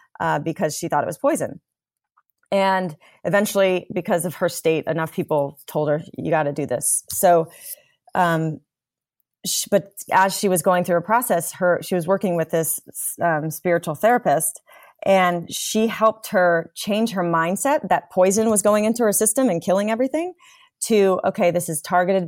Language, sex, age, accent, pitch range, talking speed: English, female, 30-49, American, 160-200 Hz, 170 wpm